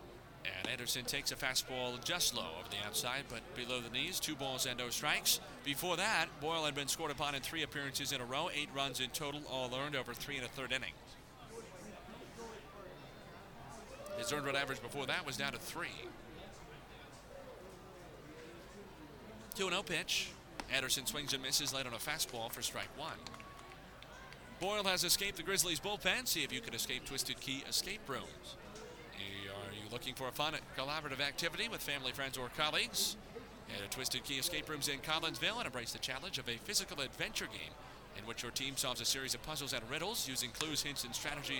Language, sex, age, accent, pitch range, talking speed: English, male, 30-49, American, 125-160 Hz, 185 wpm